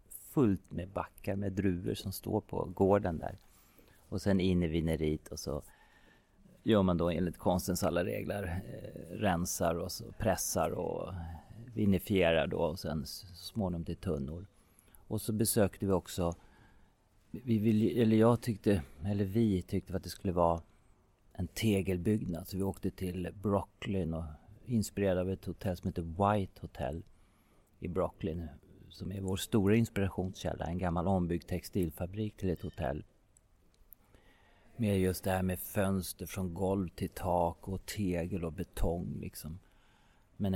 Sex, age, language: male, 40-59, English